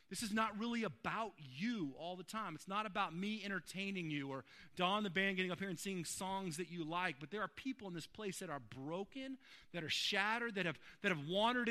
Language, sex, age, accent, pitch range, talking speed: English, male, 30-49, American, 155-210 Hz, 230 wpm